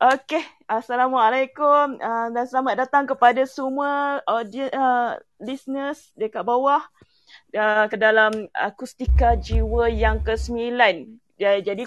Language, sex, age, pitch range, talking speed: Malay, female, 20-39, 220-270 Hz, 110 wpm